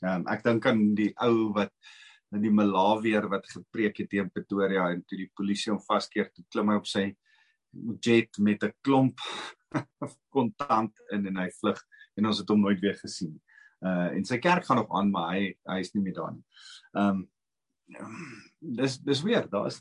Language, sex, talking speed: English, male, 185 wpm